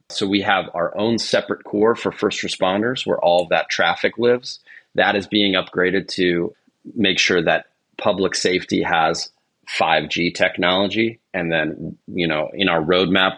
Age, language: 30-49, English